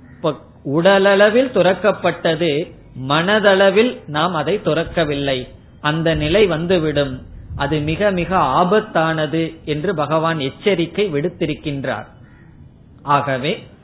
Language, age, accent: Tamil, 20-39, native